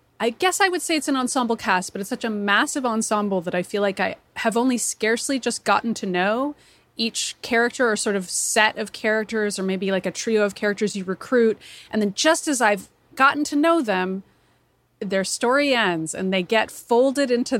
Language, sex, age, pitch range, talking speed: English, female, 30-49, 195-250 Hz, 210 wpm